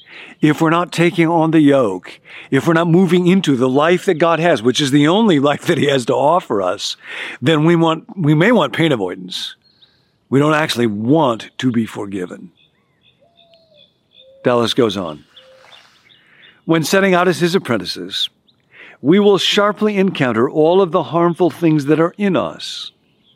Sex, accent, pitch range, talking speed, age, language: male, American, 125-170 Hz, 165 wpm, 50-69, English